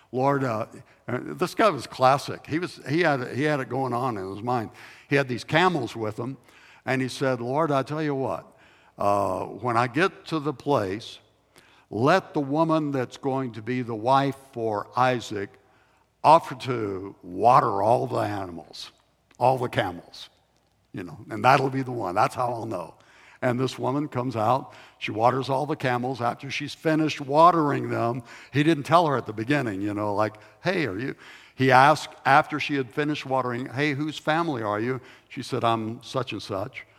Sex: male